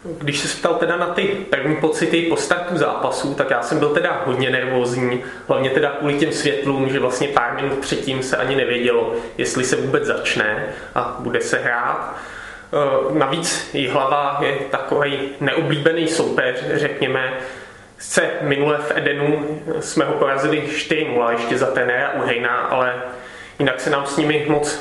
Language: Czech